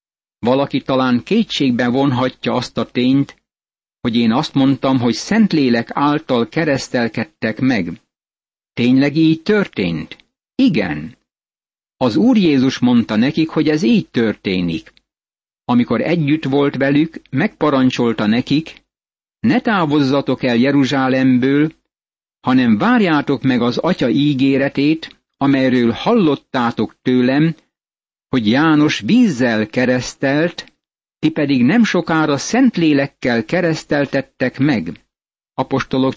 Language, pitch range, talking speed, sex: Hungarian, 125-155 Hz, 100 wpm, male